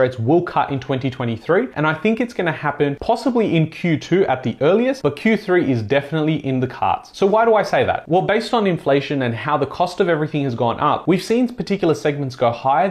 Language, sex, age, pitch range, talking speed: English, male, 30-49, 140-180 Hz, 230 wpm